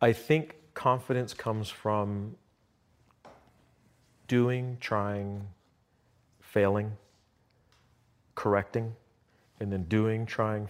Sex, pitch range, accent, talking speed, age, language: male, 95-115 Hz, American, 75 wpm, 40-59, English